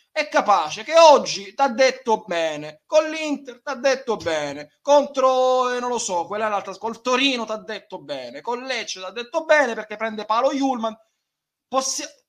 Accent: native